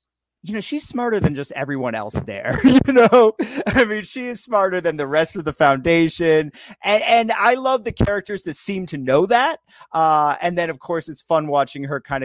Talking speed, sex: 210 wpm, male